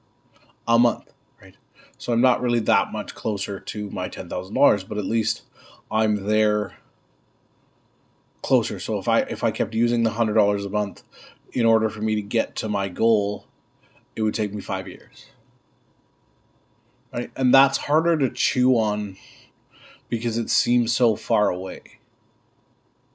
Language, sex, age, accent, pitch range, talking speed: English, male, 20-39, American, 105-125 Hz, 155 wpm